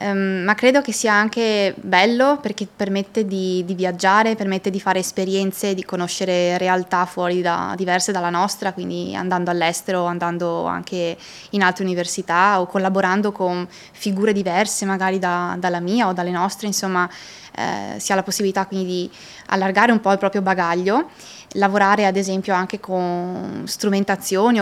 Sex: female